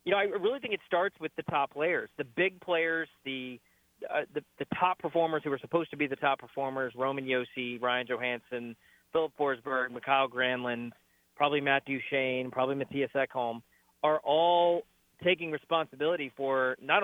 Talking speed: 170 wpm